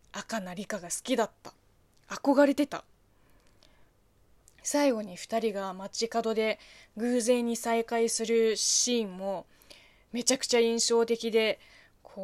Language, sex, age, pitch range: Japanese, female, 20-39, 195-280 Hz